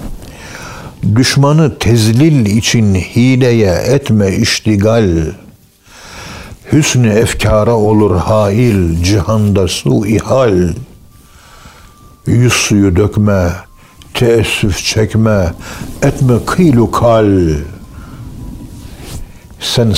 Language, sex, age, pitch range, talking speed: Turkish, male, 60-79, 95-115 Hz, 65 wpm